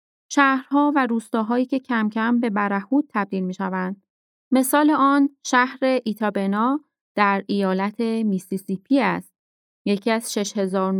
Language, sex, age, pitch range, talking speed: Persian, female, 30-49, 195-255 Hz, 125 wpm